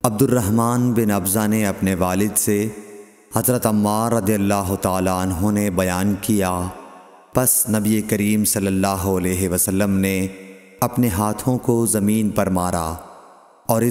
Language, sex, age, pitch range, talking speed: Urdu, male, 30-49, 95-110 Hz, 140 wpm